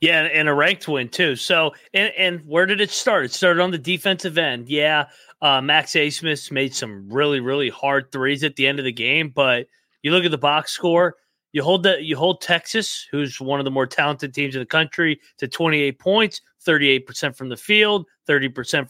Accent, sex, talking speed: American, male, 215 wpm